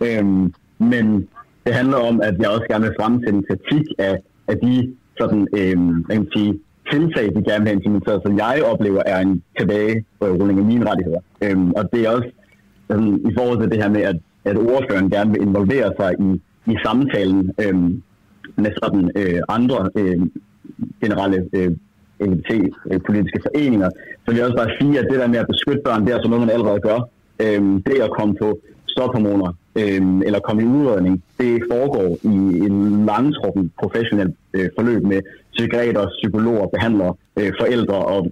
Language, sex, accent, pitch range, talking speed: Danish, male, native, 95-115 Hz, 170 wpm